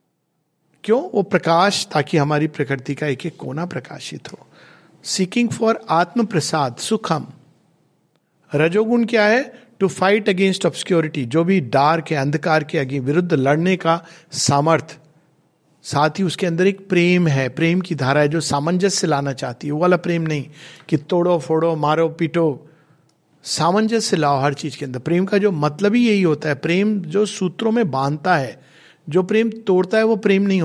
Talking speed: 170 wpm